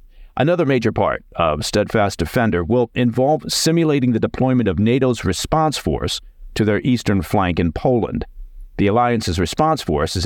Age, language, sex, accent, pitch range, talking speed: 50-69, English, male, American, 90-120 Hz, 150 wpm